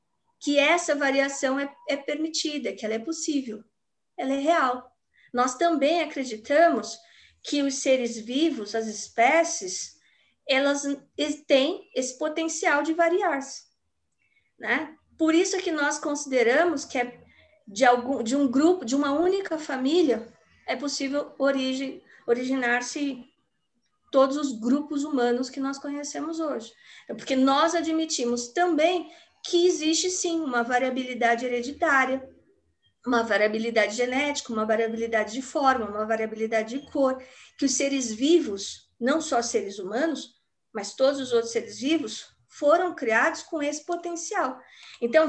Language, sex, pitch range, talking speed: Portuguese, female, 240-315 Hz, 125 wpm